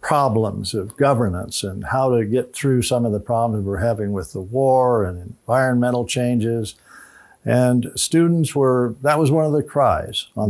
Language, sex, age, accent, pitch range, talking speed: English, male, 60-79, American, 105-135 Hz, 170 wpm